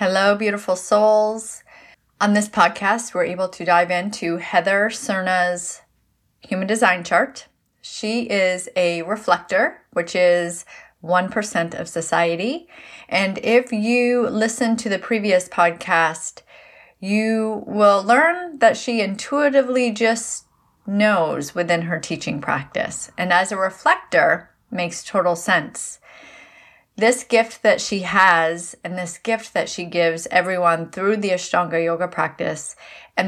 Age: 30-49